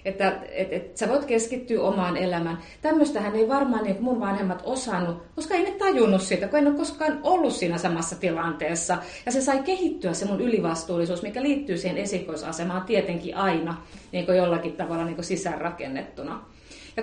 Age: 30-49